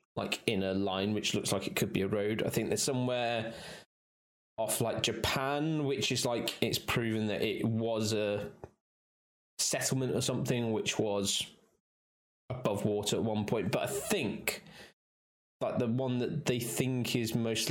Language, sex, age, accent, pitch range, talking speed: English, male, 20-39, British, 100-115 Hz, 165 wpm